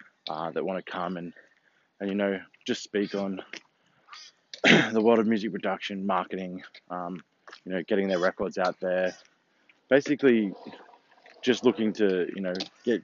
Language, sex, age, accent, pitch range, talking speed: English, male, 20-39, Australian, 90-105 Hz, 150 wpm